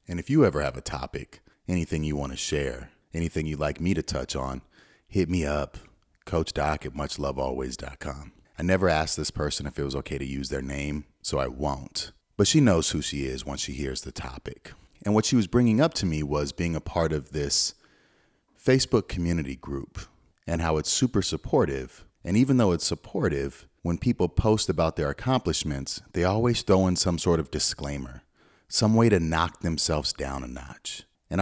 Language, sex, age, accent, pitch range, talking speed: English, male, 30-49, American, 70-95 Hz, 195 wpm